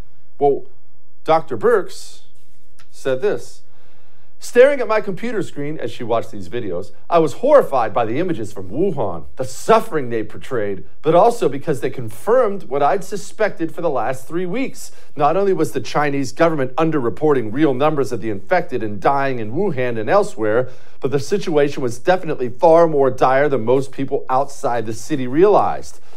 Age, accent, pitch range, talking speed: 40-59, American, 125-190 Hz, 165 wpm